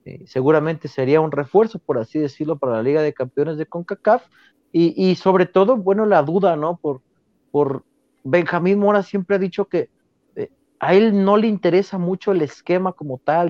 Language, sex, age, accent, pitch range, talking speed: Spanish, male, 40-59, Mexican, 145-185 Hz, 185 wpm